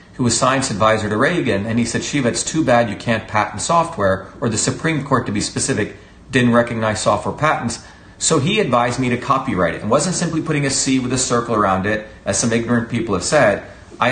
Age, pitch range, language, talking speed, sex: 40-59, 105-130 Hz, English, 225 wpm, male